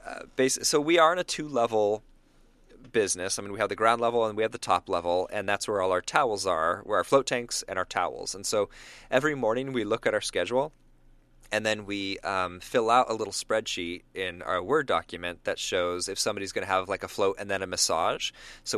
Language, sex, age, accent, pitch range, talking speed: English, male, 30-49, American, 90-135 Hz, 230 wpm